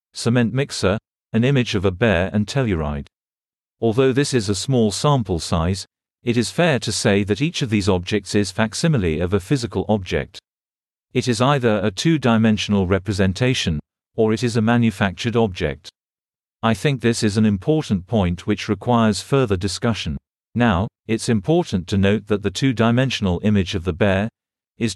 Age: 50-69